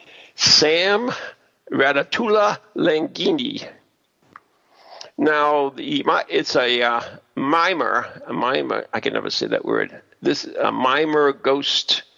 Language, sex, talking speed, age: English, male, 110 wpm, 50-69